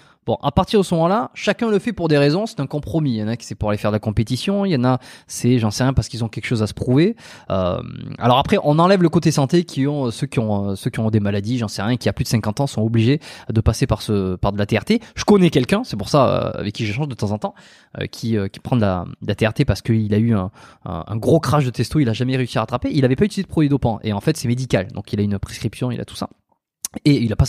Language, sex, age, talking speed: French, male, 20-39, 310 wpm